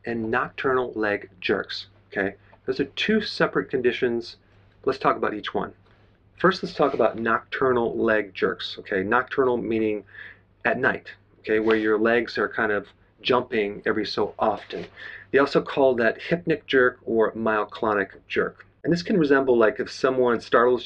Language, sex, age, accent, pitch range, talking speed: English, male, 40-59, American, 110-135 Hz, 160 wpm